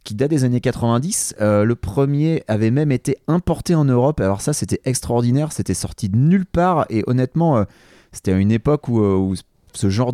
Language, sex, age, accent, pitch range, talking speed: French, male, 30-49, French, 105-140 Hz, 200 wpm